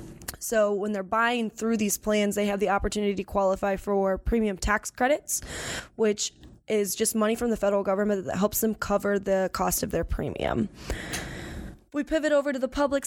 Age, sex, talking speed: 10-29, female, 185 wpm